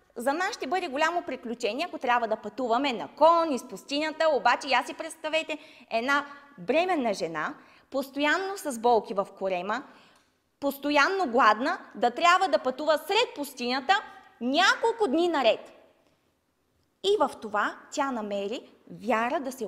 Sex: female